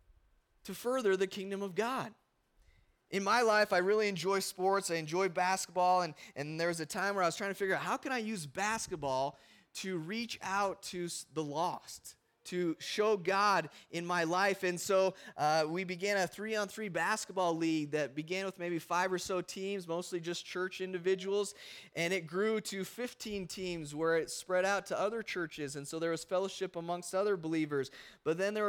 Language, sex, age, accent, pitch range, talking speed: English, male, 20-39, American, 165-195 Hz, 190 wpm